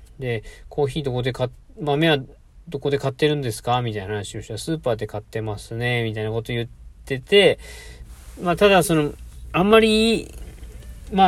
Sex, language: male, Japanese